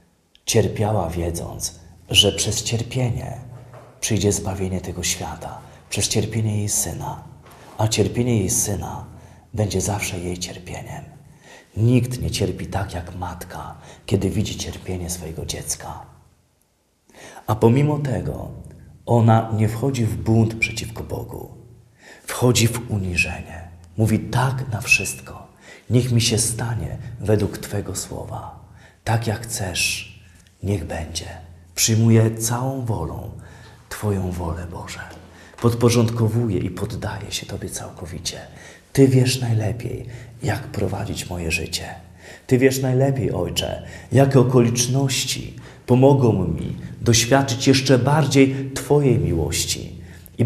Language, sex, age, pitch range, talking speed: Polish, male, 40-59, 90-120 Hz, 110 wpm